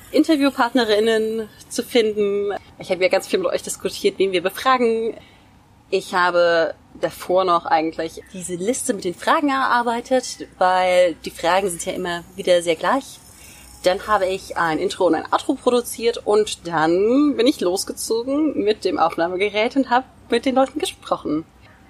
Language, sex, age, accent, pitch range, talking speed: German, female, 30-49, German, 175-250 Hz, 155 wpm